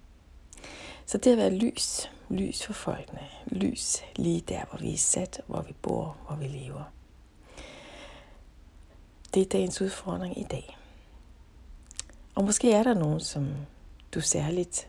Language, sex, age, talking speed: Danish, female, 60-79, 140 wpm